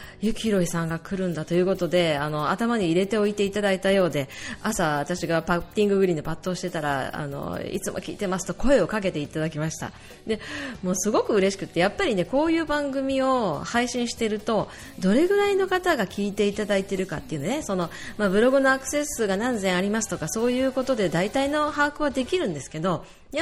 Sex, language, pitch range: female, Japanese, 165-230 Hz